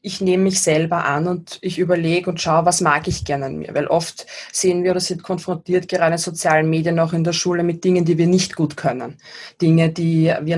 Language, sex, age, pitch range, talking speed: German, female, 20-39, 160-185 Hz, 235 wpm